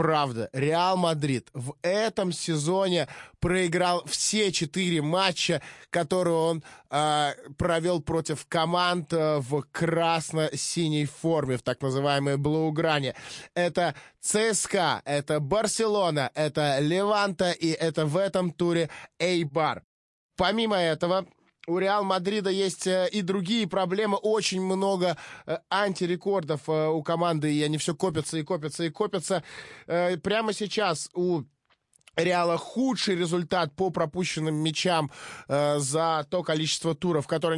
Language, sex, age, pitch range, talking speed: Russian, male, 20-39, 155-190 Hz, 115 wpm